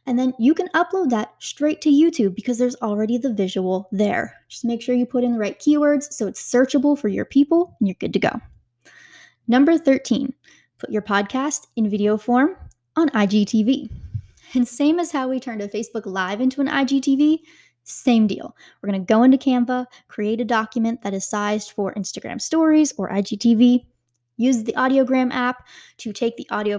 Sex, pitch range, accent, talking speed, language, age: female, 210-275 Hz, American, 185 wpm, English, 10-29